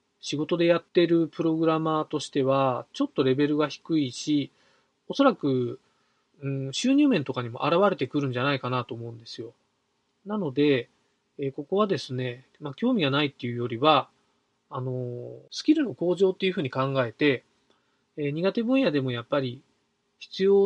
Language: Japanese